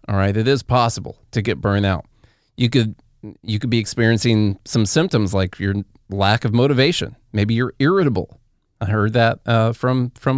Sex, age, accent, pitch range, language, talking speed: male, 30-49, American, 110-135 Hz, English, 175 wpm